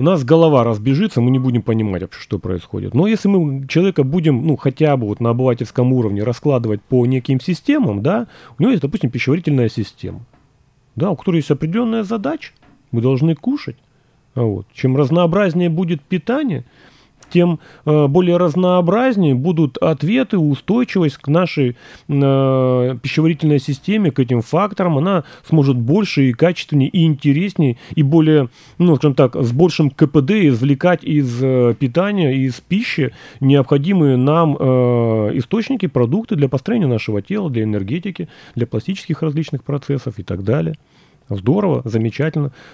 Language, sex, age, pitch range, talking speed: Russian, male, 30-49, 125-170 Hz, 130 wpm